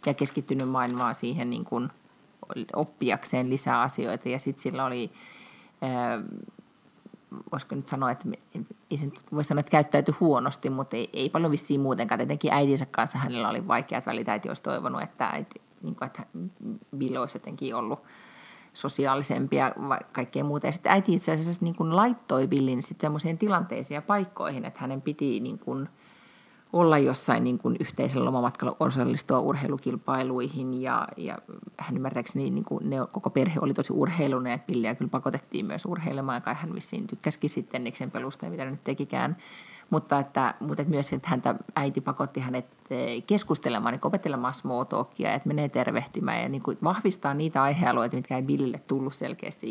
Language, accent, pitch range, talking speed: Finnish, native, 130-185 Hz, 150 wpm